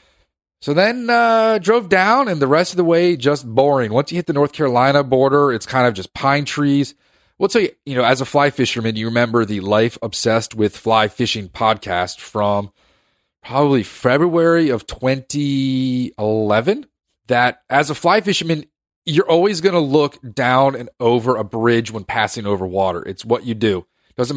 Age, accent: 30-49, American